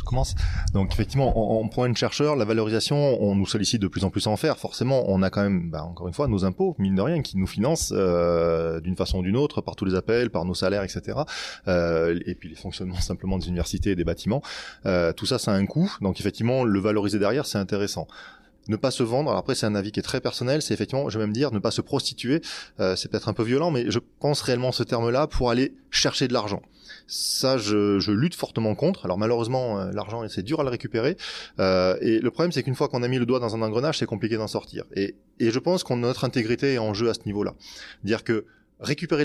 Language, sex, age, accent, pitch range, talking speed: French, male, 20-39, French, 100-130 Hz, 255 wpm